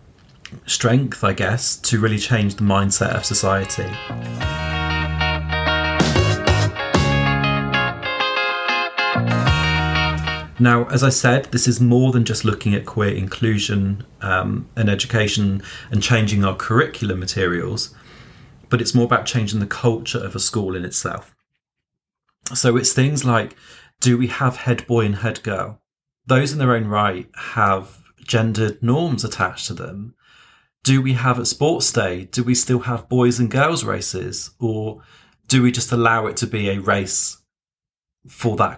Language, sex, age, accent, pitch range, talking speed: English, male, 30-49, British, 100-125 Hz, 140 wpm